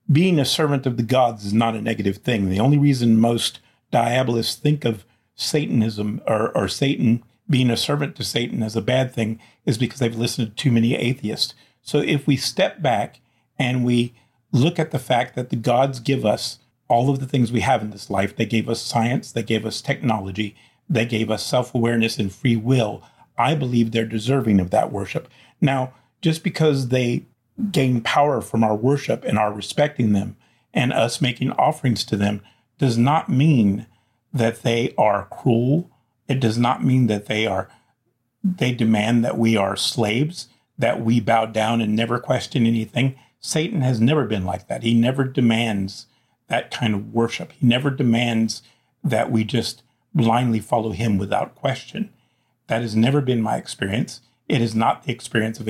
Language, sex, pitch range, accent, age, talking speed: English, male, 110-130 Hz, American, 40-59, 180 wpm